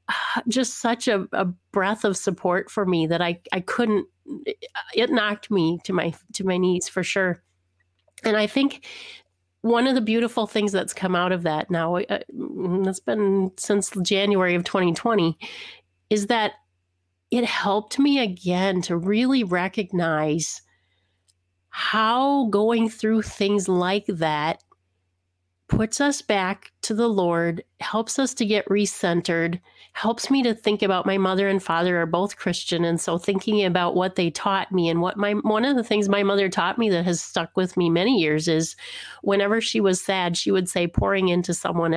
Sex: female